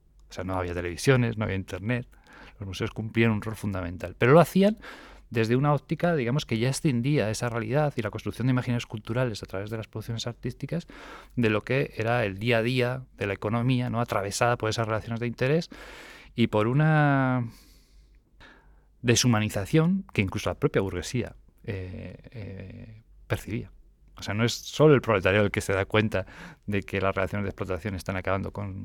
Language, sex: Spanish, male